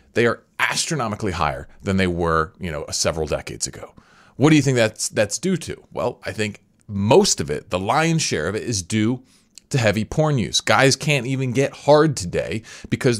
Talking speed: 200 wpm